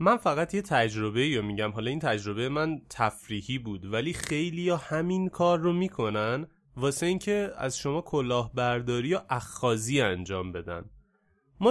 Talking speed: 150 wpm